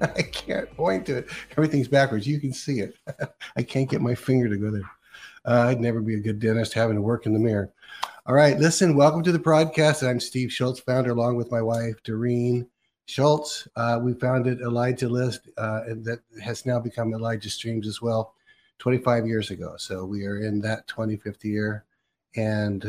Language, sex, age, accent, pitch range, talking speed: English, male, 60-79, American, 110-125 Hz, 195 wpm